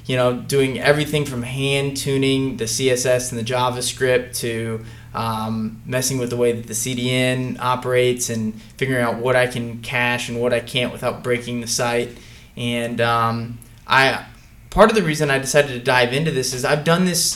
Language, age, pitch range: English, 20-39, 120-145 Hz